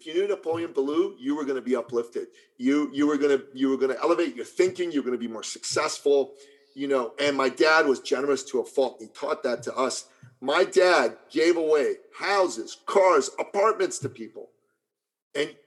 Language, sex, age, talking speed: English, male, 40-59, 205 wpm